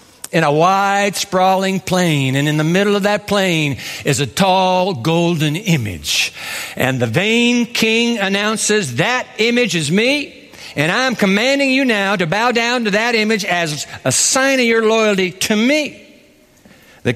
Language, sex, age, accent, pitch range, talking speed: English, male, 60-79, American, 165-245 Hz, 165 wpm